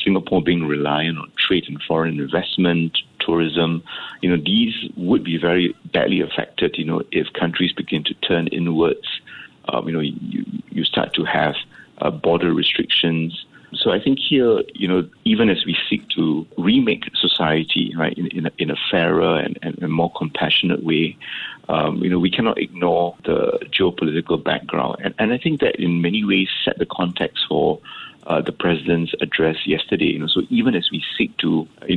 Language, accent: English, Malaysian